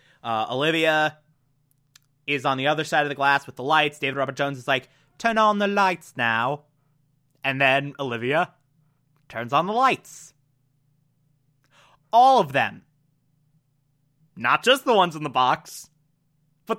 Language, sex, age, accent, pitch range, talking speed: English, male, 30-49, American, 145-215 Hz, 145 wpm